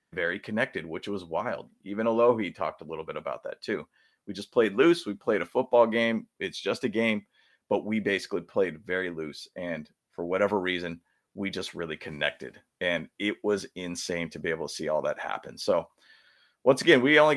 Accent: American